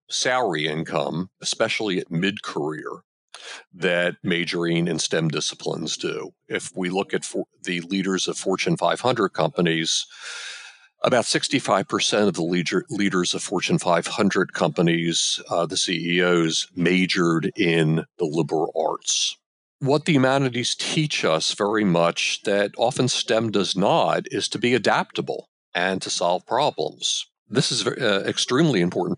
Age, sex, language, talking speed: 50-69, male, English, 130 wpm